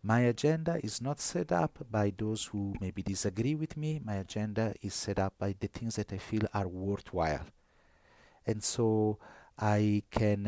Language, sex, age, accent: English, male, 50-69, Italian